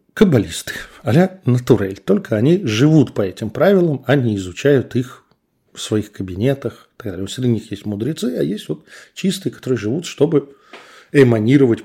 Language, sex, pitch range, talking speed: Russian, male, 100-140 Hz, 145 wpm